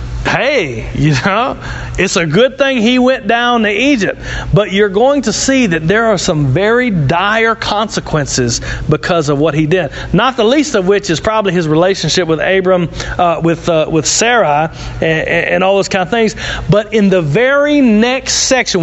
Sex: male